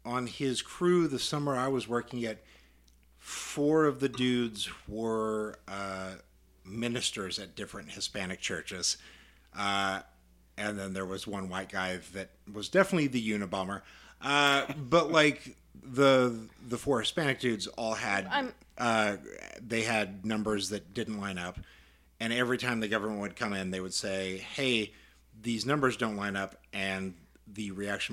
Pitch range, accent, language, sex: 95-115 Hz, American, English, male